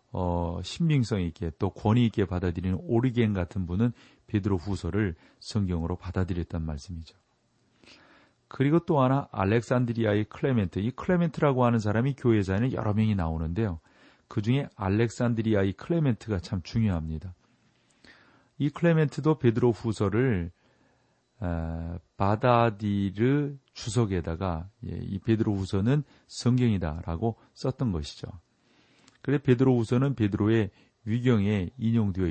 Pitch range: 90-120 Hz